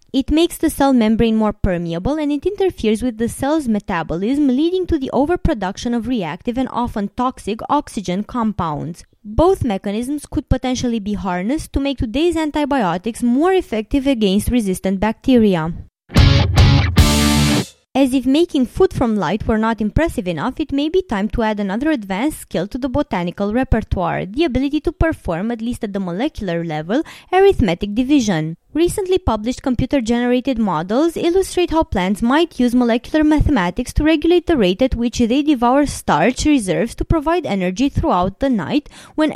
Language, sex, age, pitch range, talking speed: English, female, 20-39, 205-295 Hz, 155 wpm